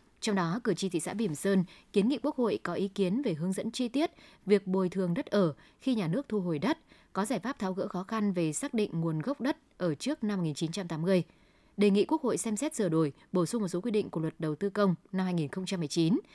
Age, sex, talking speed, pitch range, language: 20-39, female, 255 wpm, 175-225 Hz, Vietnamese